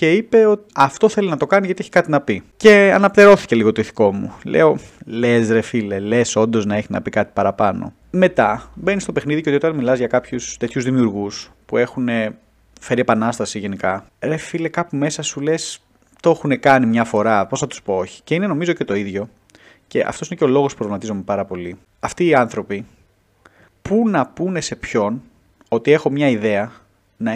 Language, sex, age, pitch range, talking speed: Greek, male, 30-49, 110-160 Hz, 200 wpm